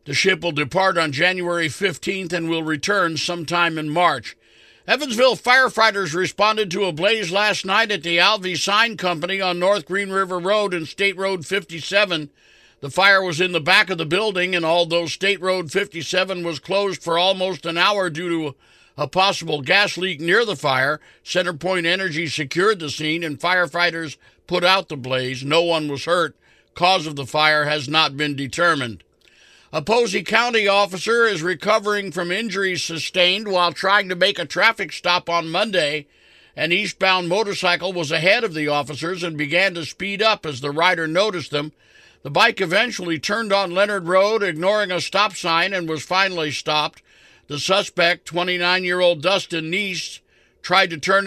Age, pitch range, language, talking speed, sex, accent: 50-69, 165-195 Hz, English, 170 wpm, male, American